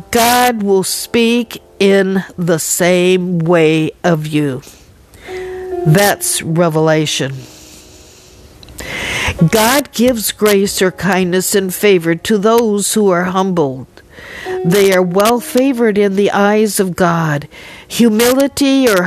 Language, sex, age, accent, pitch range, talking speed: English, female, 60-79, American, 185-245 Hz, 105 wpm